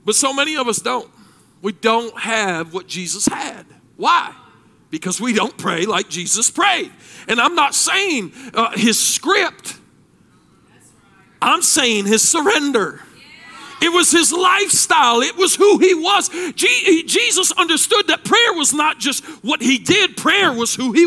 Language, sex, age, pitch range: English, male, 40-59, 225-320 Hz